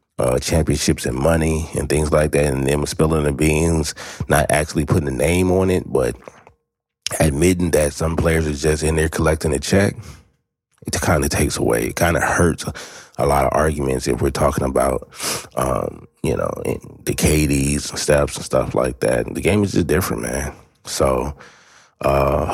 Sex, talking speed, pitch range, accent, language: male, 185 wpm, 75-90 Hz, American, English